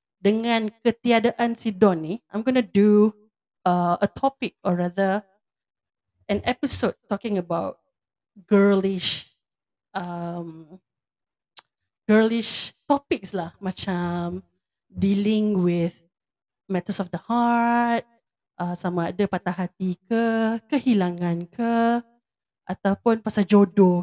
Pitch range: 185-235 Hz